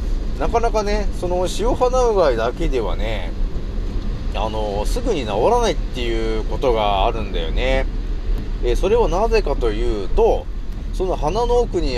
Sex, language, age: male, Japanese, 40-59